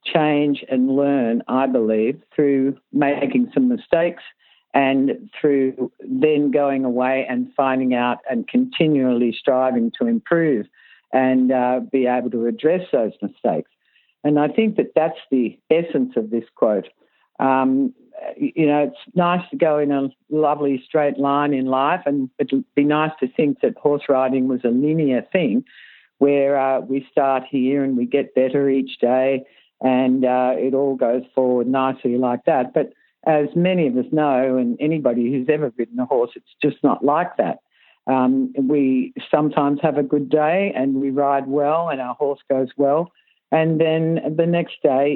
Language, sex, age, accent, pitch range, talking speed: English, female, 50-69, Australian, 130-155 Hz, 170 wpm